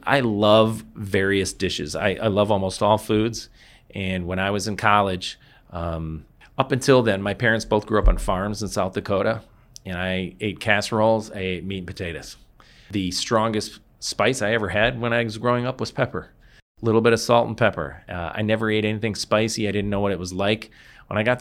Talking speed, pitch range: 210 wpm, 95-110 Hz